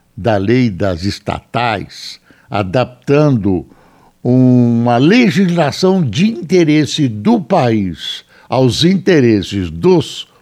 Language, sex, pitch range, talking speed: Portuguese, male, 95-140 Hz, 80 wpm